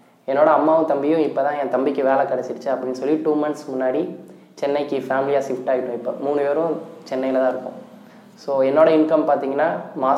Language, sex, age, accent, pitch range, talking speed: Tamil, male, 20-39, native, 130-155 Hz, 165 wpm